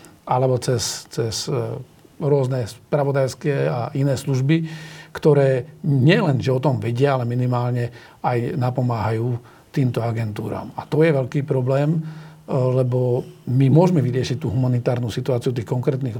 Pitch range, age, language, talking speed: 125-150 Hz, 50-69, Slovak, 125 wpm